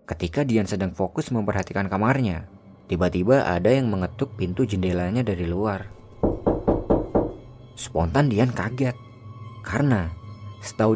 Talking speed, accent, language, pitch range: 105 wpm, native, Indonesian, 95-130 Hz